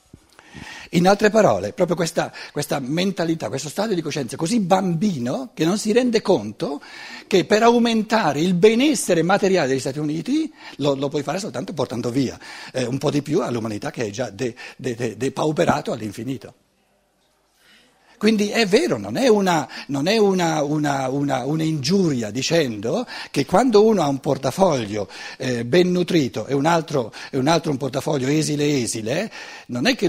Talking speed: 155 wpm